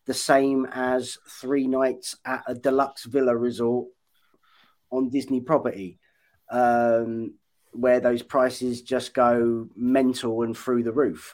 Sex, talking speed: male, 125 wpm